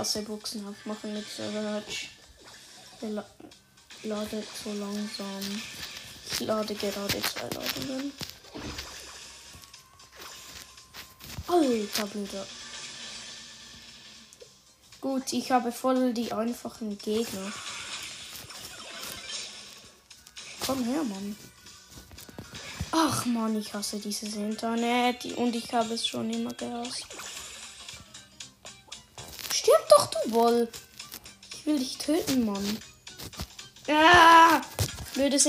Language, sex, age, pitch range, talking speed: English, female, 10-29, 210-275 Hz, 80 wpm